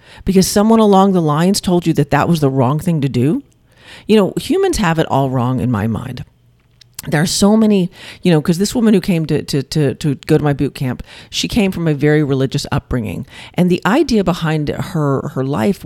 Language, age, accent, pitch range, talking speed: English, 40-59, American, 135-180 Hz, 225 wpm